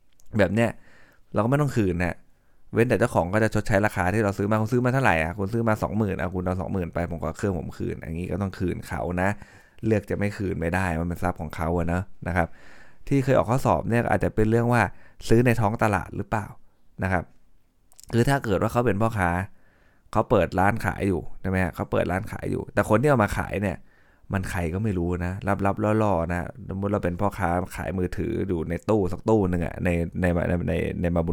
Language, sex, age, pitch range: Thai, male, 20-39, 90-110 Hz